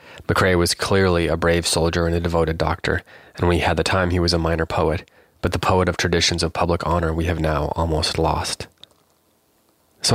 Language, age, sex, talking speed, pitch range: English, 20-39, male, 205 wpm, 85-95 Hz